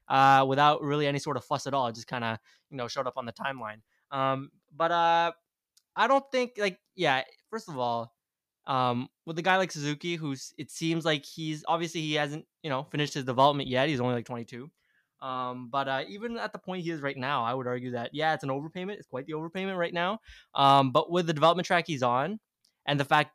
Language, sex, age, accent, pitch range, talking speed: English, male, 20-39, American, 130-160 Hz, 235 wpm